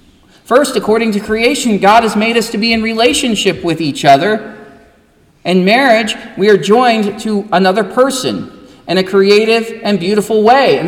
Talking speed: 165 wpm